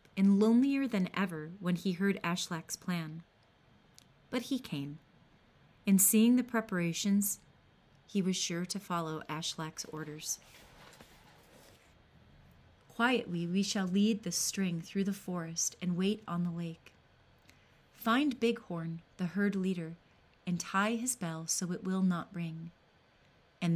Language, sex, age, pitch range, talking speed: English, female, 30-49, 170-200 Hz, 130 wpm